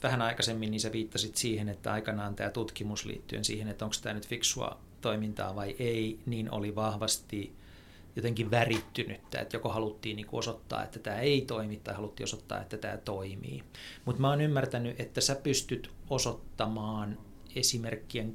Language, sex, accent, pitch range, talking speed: Finnish, male, native, 105-115 Hz, 160 wpm